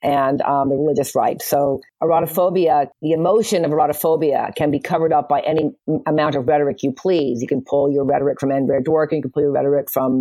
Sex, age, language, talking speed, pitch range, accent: female, 50-69, English, 210 wpm, 140-165 Hz, American